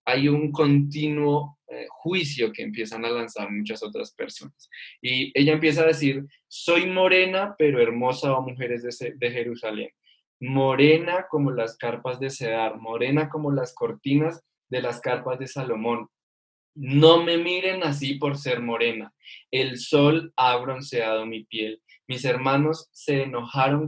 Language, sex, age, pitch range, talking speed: English, male, 10-29, 125-160 Hz, 150 wpm